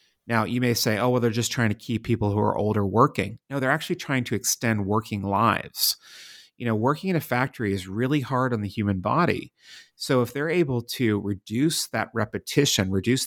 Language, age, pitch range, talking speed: English, 30-49, 105-130 Hz, 210 wpm